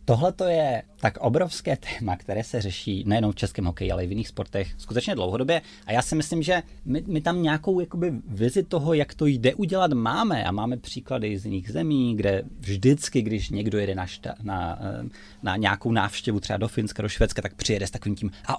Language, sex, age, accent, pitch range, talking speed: Czech, male, 20-39, native, 105-140 Hz, 205 wpm